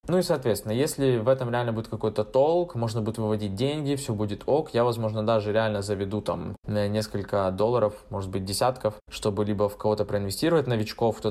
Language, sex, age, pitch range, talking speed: Russian, male, 20-39, 105-125 Hz, 185 wpm